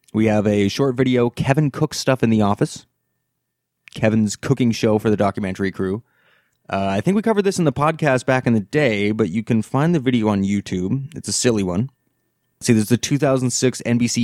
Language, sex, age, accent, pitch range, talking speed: English, male, 20-39, American, 105-130 Hz, 200 wpm